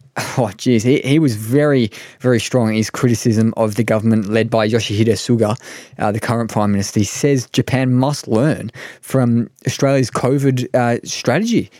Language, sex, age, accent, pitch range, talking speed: English, male, 20-39, Australian, 110-130 Hz, 170 wpm